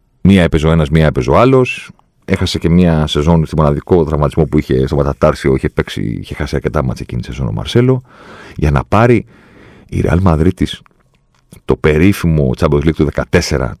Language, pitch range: Greek, 75-100 Hz